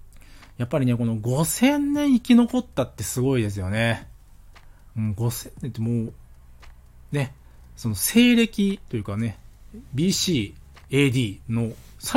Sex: male